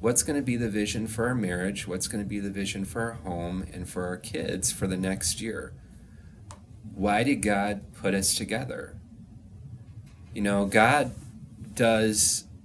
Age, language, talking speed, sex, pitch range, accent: 30-49, English, 160 wpm, male, 95-110 Hz, American